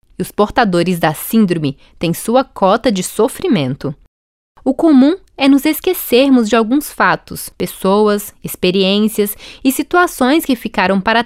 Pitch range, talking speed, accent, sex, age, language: 195-270 Hz, 135 wpm, Brazilian, female, 20-39, Portuguese